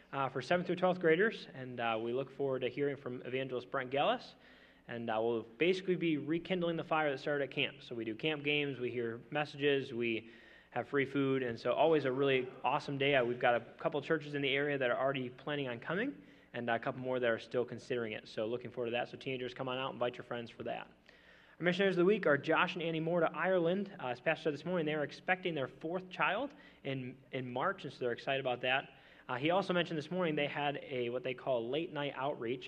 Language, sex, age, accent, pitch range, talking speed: English, male, 20-39, American, 120-150 Hz, 250 wpm